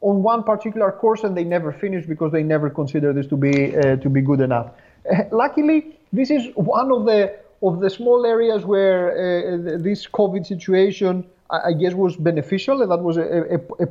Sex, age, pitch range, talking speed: male, 30-49, 170-210 Hz, 195 wpm